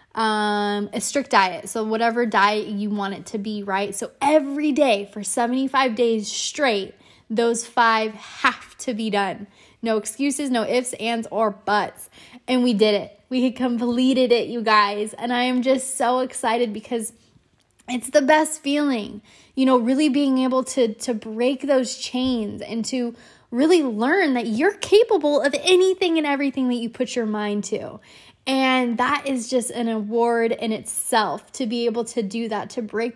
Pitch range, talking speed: 220-265 Hz, 175 wpm